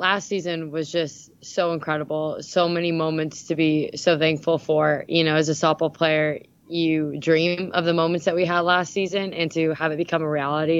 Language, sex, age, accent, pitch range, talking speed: English, female, 20-39, American, 160-190 Hz, 205 wpm